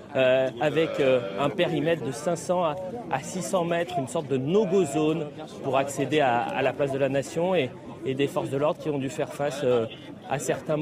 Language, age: French, 30-49